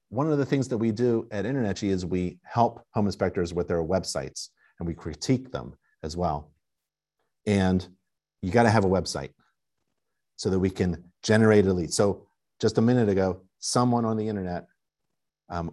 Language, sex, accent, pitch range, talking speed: English, male, American, 85-105 Hz, 175 wpm